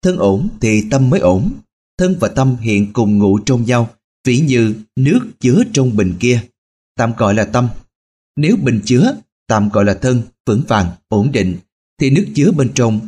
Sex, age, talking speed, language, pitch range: male, 20-39, 190 wpm, Vietnamese, 100-135 Hz